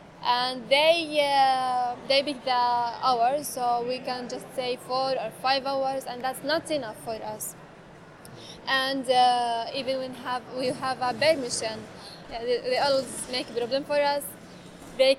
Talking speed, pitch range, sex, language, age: 165 wpm, 245-285 Hz, female, English, 20-39